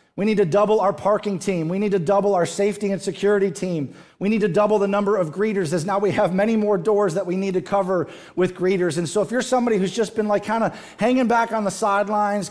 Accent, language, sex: American, English, male